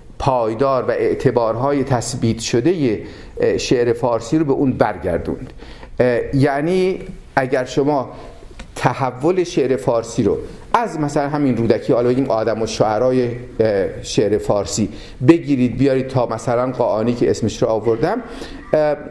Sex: male